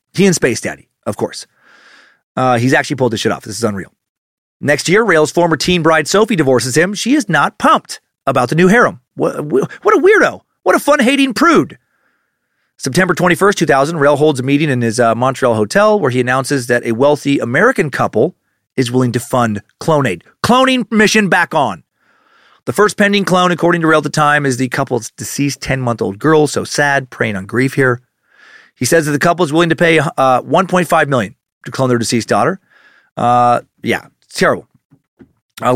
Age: 30-49